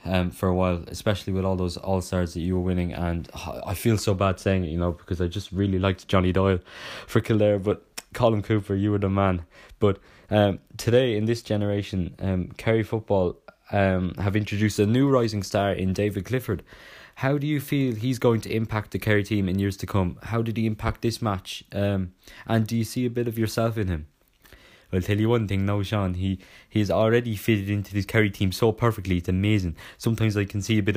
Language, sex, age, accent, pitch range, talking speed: English, male, 20-39, British, 90-110 Hz, 225 wpm